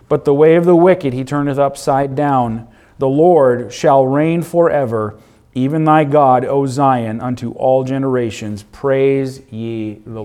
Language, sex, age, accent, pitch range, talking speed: English, male, 40-59, American, 135-180 Hz, 150 wpm